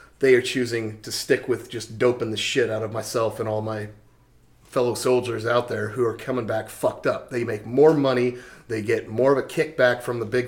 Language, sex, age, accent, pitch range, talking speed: English, male, 30-49, American, 110-130 Hz, 225 wpm